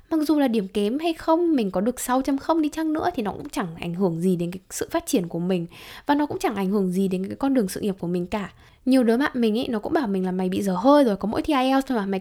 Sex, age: female, 10-29